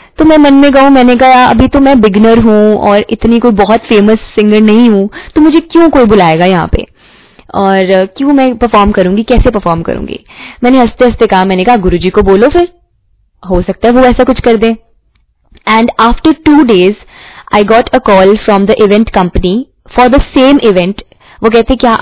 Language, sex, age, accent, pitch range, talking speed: Hindi, female, 20-39, native, 195-245 Hz, 195 wpm